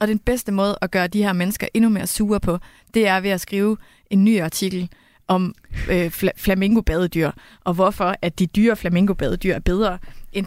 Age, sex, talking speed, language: 30-49, female, 195 wpm, Danish